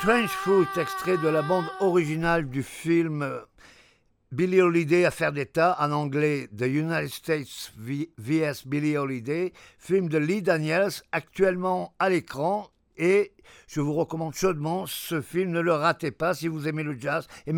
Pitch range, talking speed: 130-170 Hz, 155 wpm